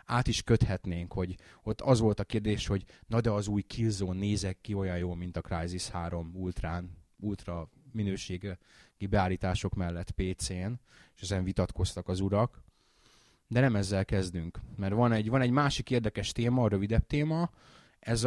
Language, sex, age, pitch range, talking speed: Hungarian, male, 20-39, 95-120 Hz, 170 wpm